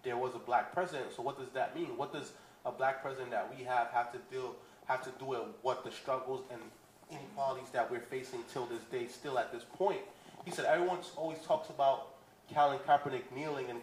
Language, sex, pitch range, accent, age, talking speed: English, male, 130-175 Hz, American, 20-39, 210 wpm